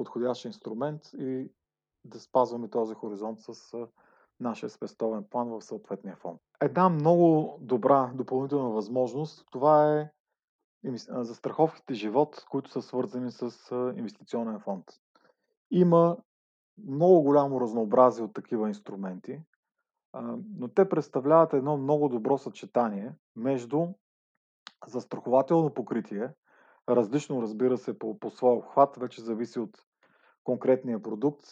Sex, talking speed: male, 115 wpm